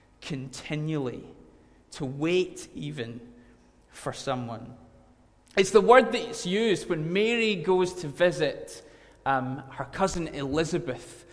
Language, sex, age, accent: English, male, 20-39, British